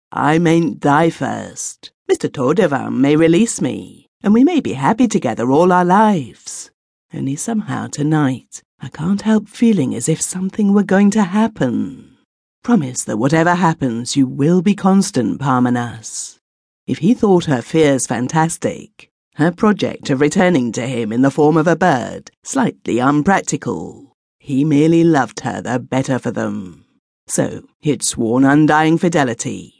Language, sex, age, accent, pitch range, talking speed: English, female, 50-69, British, 130-195 Hz, 150 wpm